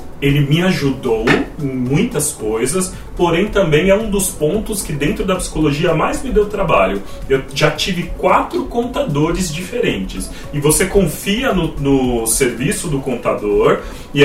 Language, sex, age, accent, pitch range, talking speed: Portuguese, male, 30-49, Brazilian, 145-205 Hz, 145 wpm